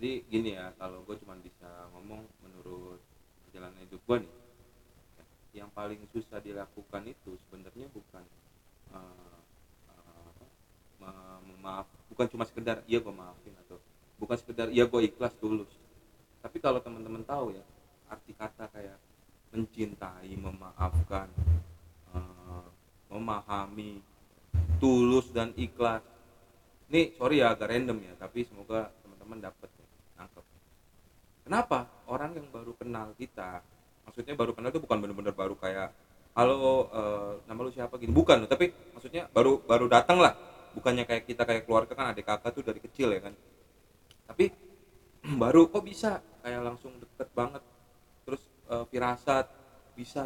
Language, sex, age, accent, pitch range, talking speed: Indonesian, male, 30-49, native, 95-130 Hz, 135 wpm